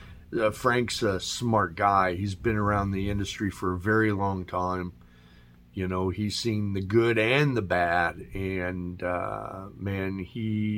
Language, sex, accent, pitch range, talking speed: English, male, American, 90-110 Hz, 155 wpm